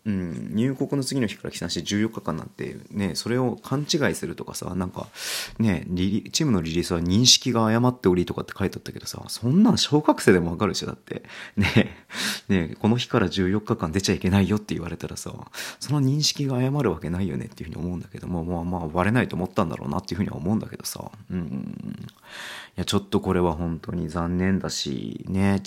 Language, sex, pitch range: Japanese, male, 90-115 Hz